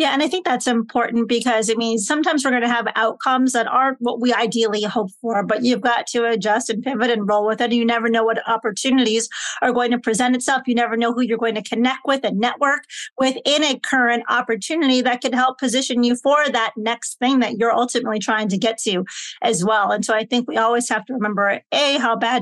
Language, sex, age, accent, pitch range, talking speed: English, female, 40-59, American, 220-255 Hz, 235 wpm